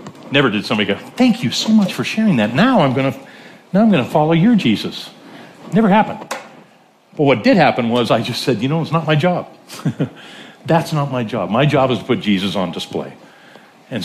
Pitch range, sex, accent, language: 105-145 Hz, male, American, English